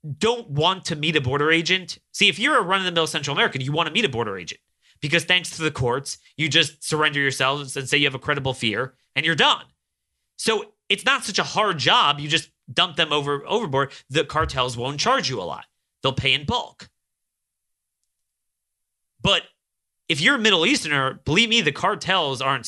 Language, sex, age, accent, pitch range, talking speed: English, male, 30-49, American, 125-180 Hz, 205 wpm